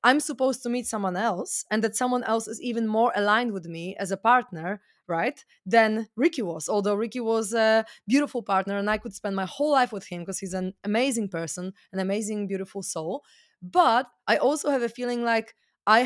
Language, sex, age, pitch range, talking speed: English, female, 20-39, 195-245 Hz, 205 wpm